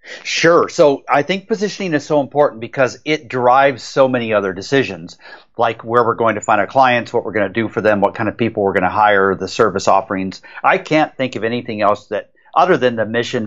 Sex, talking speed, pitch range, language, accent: male, 230 wpm, 105-135 Hz, English, American